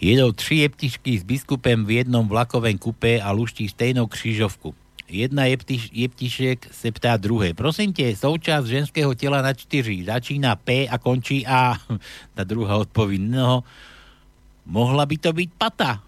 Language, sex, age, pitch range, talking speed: Slovak, male, 60-79, 125-160 Hz, 145 wpm